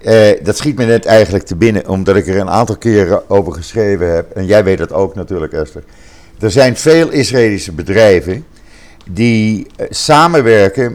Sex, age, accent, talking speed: male, 50-69, Dutch, 170 wpm